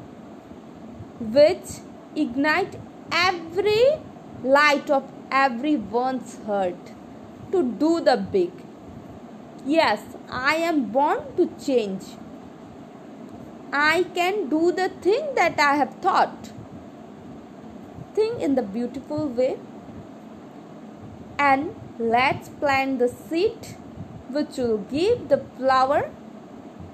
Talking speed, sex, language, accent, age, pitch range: 90 wpm, female, English, Indian, 20-39, 265-355 Hz